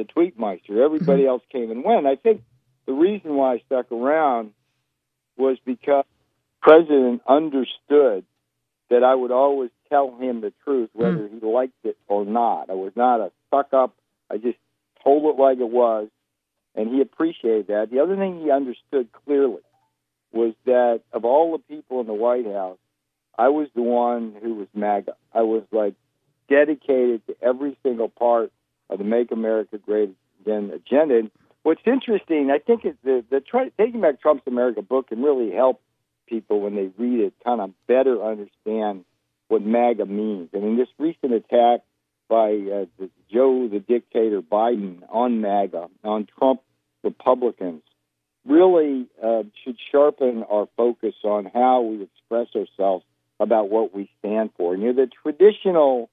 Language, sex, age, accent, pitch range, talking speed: English, male, 50-69, American, 105-135 Hz, 165 wpm